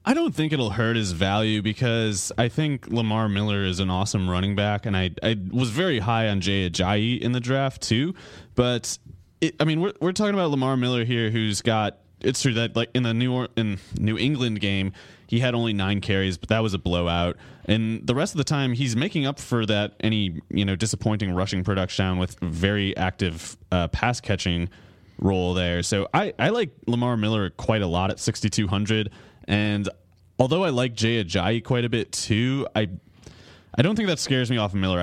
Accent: American